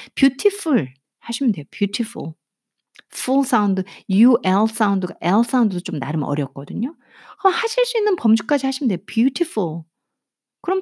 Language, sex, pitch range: Korean, female, 185-270 Hz